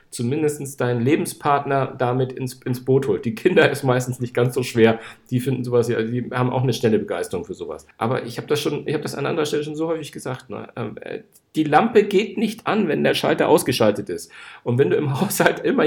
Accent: German